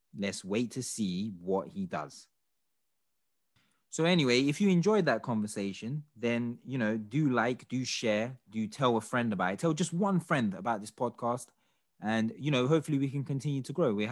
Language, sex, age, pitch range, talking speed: English, male, 20-39, 110-155 Hz, 185 wpm